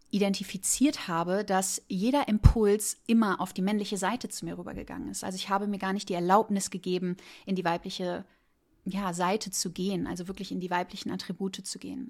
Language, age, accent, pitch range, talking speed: German, 30-49, German, 185-210 Hz, 190 wpm